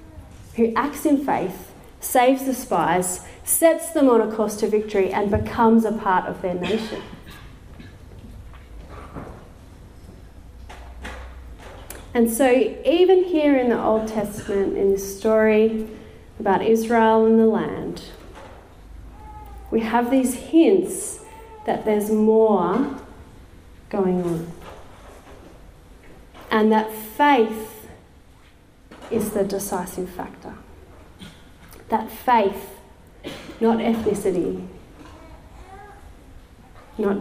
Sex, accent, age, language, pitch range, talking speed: female, Australian, 30-49, English, 175-250 Hz, 95 wpm